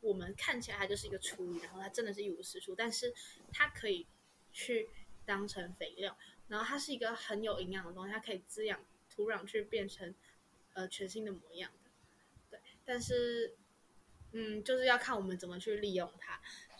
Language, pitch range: Chinese, 195-245 Hz